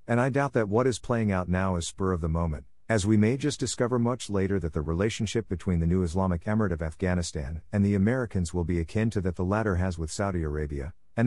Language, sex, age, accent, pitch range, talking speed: English, male, 50-69, American, 90-110 Hz, 245 wpm